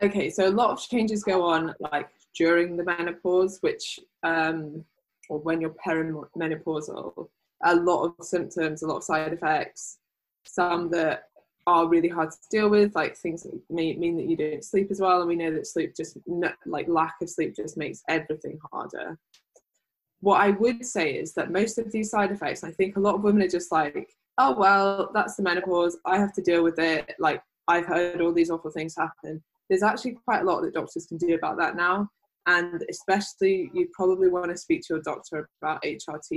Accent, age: British, 10-29